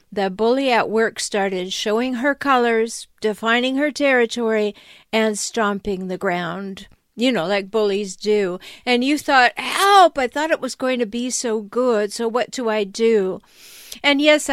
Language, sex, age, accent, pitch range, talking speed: English, female, 50-69, American, 210-260 Hz, 165 wpm